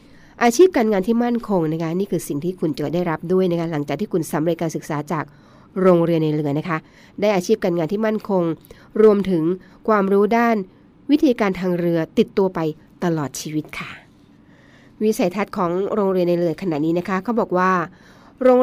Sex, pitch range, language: female, 170-210 Hz, Thai